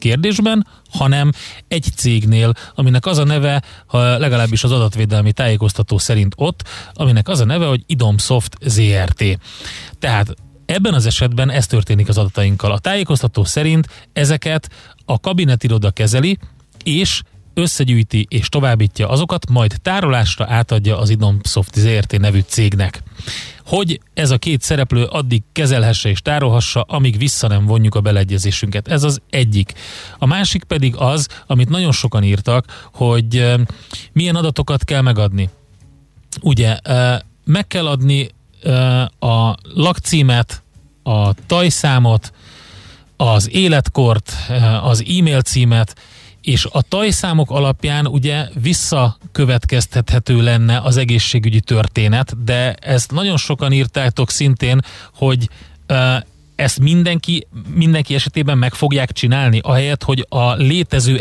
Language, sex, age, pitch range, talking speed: Hungarian, male, 30-49, 110-140 Hz, 120 wpm